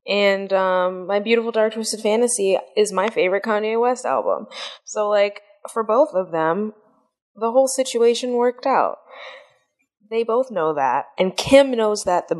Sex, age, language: female, 20-39, English